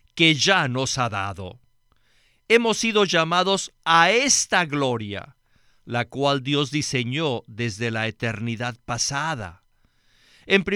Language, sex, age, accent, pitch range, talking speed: Spanish, male, 50-69, Mexican, 120-175 Hz, 110 wpm